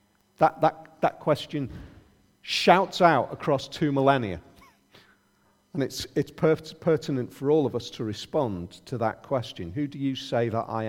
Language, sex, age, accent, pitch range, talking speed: English, male, 40-59, British, 140-195 Hz, 150 wpm